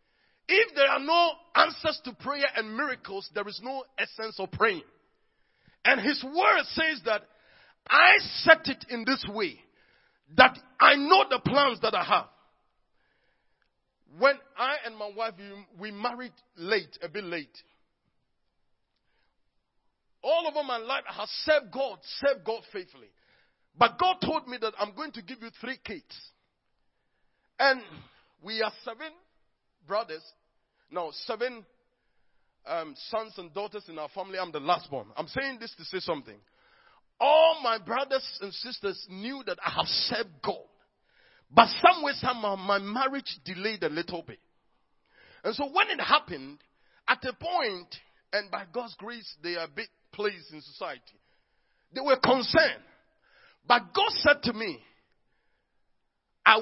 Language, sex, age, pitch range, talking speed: English, male, 40-59, 195-285 Hz, 150 wpm